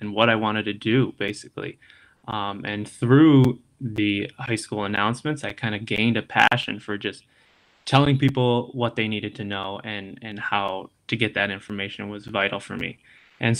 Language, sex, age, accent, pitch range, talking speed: English, male, 20-39, American, 105-120 Hz, 180 wpm